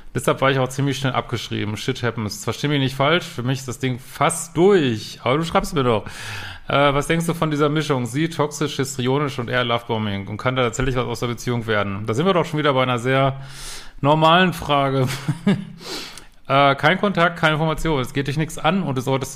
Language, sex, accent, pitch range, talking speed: German, male, German, 120-145 Hz, 225 wpm